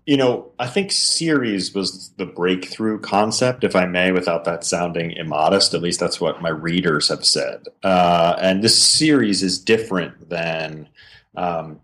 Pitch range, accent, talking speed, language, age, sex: 90-100 Hz, American, 160 wpm, English, 40-59, male